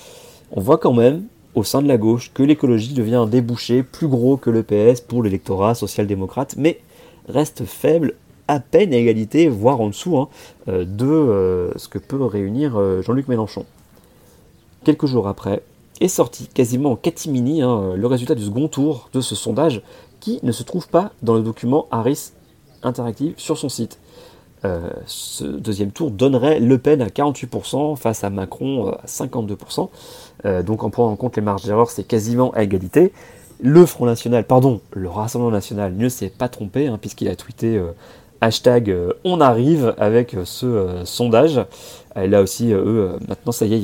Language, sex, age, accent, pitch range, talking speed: French, male, 40-59, French, 105-135 Hz, 175 wpm